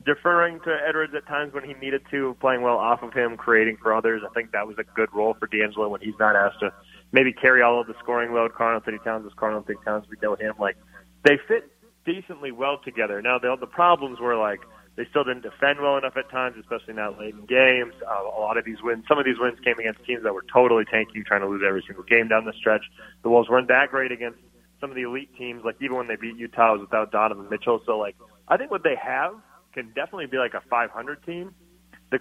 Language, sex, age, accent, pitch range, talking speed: English, male, 30-49, American, 110-135 Hz, 255 wpm